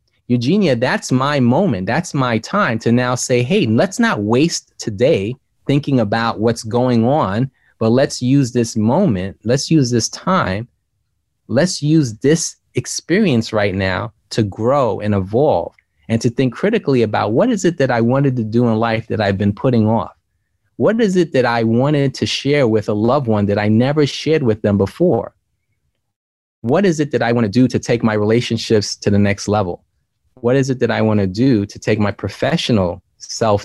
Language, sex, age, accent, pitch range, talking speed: English, male, 30-49, American, 105-130 Hz, 190 wpm